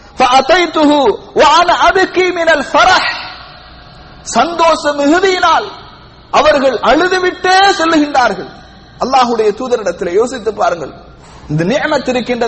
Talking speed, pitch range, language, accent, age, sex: 65 wpm, 260-335 Hz, English, Indian, 50-69, male